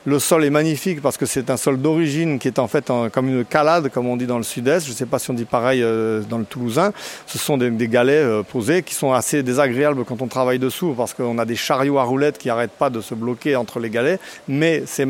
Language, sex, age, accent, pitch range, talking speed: French, male, 40-59, French, 125-150 Hz, 260 wpm